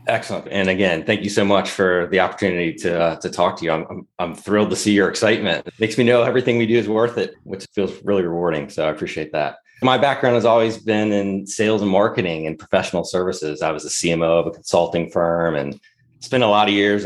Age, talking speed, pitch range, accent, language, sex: 30-49, 240 wpm, 90-115 Hz, American, English, male